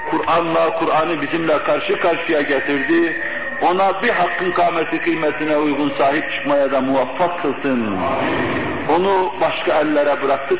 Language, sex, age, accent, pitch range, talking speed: English, male, 60-79, Turkish, 170-235 Hz, 120 wpm